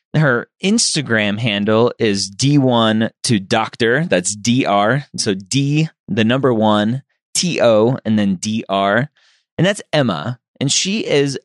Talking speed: 125 wpm